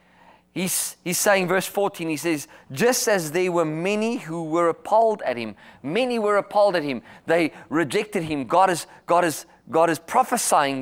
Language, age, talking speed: English, 30-49, 160 wpm